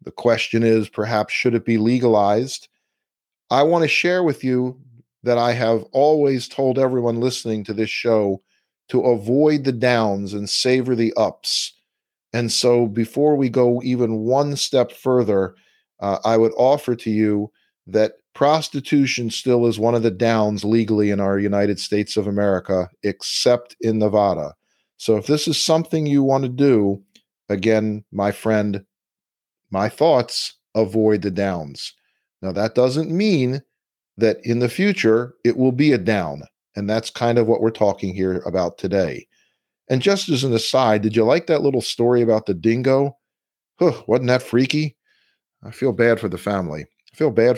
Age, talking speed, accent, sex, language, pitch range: 50-69, 165 wpm, American, male, English, 105-130 Hz